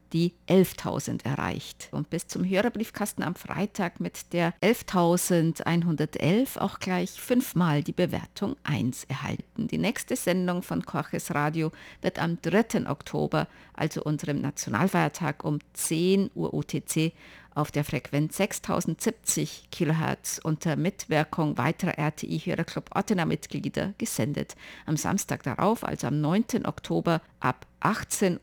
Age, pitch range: 50-69, 155-195 Hz